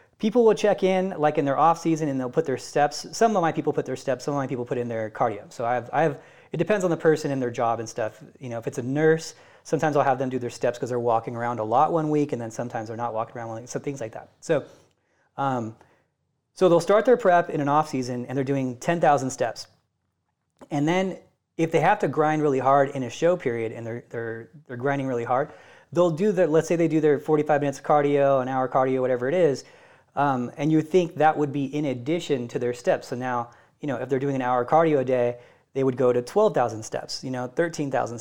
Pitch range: 130-165 Hz